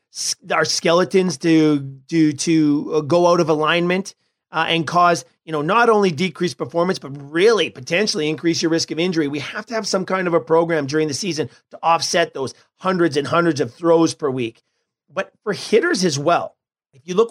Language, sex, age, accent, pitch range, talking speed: English, male, 40-59, American, 155-190 Hz, 190 wpm